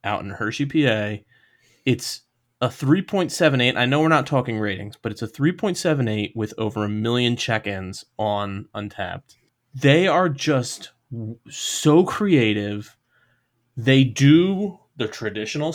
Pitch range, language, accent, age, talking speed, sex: 110-140 Hz, English, American, 30-49, 135 wpm, male